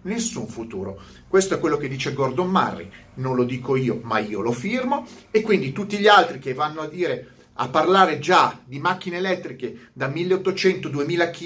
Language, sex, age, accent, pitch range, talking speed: Italian, male, 30-49, native, 125-185 Hz, 180 wpm